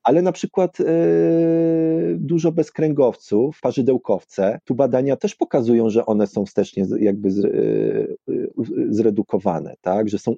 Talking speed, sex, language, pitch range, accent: 110 wpm, male, Polish, 110-160 Hz, native